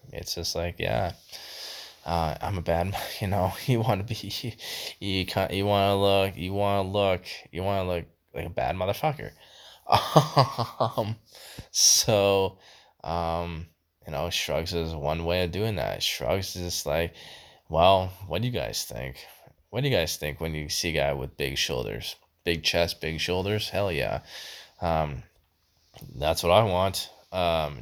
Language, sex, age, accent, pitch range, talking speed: English, male, 20-39, American, 80-100 Hz, 165 wpm